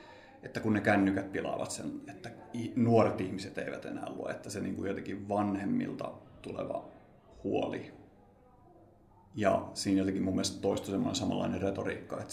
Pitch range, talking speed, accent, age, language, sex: 95-105 Hz, 140 wpm, native, 30-49, Finnish, male